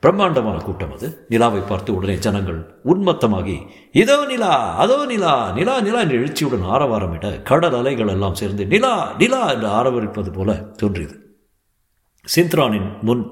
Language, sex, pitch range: Tamil, male, 100-145 Hz